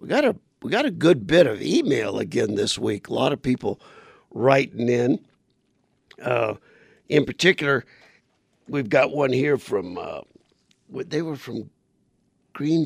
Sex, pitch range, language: male, 120-150 Hz, English